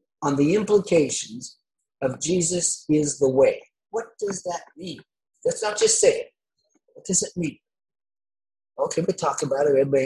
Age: 50-69